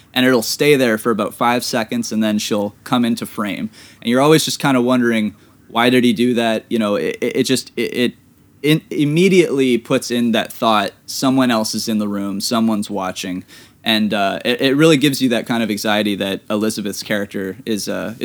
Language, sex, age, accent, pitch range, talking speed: English, male, 20-39, American, 110-135 Hz, 205 wpm